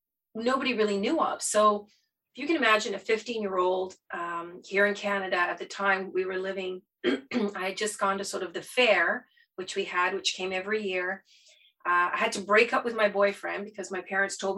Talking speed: 215 wpm